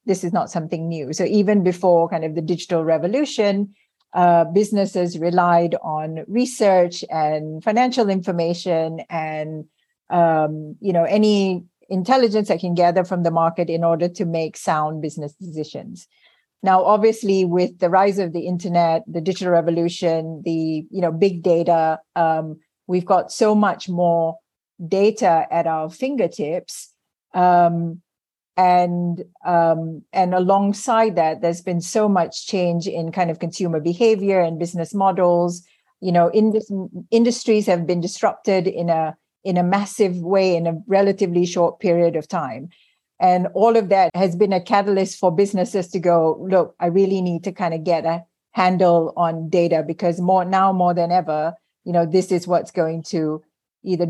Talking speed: 160 wpm